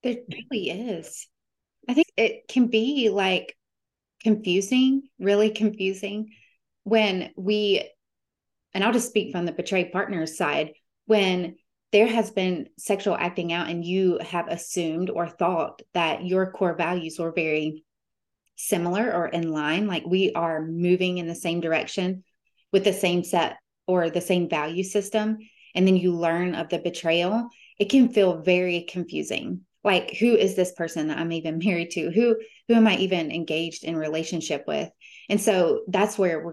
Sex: female